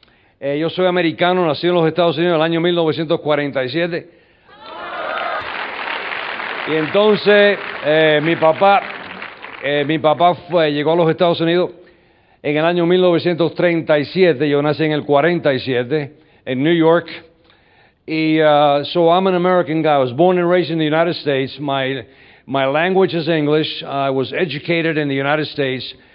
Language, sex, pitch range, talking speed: Spanish, male, 145-175 Hz, 155 wpm